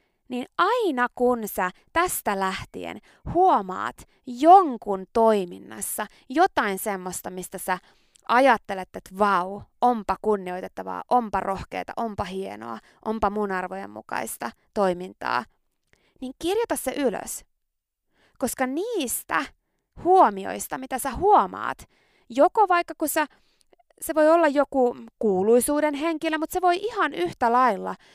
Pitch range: 195-275 Hz